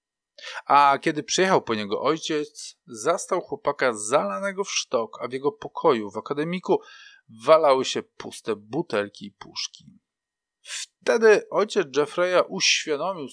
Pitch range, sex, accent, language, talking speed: 125-185 Hz, male, native, Polish, 120 wpm